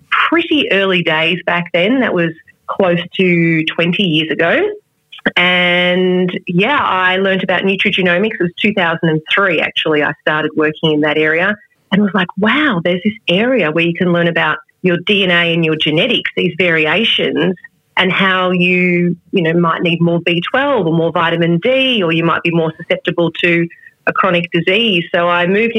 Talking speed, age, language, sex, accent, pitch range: 170 wpm, 30-49, English, female, Australian, 165-190 Hz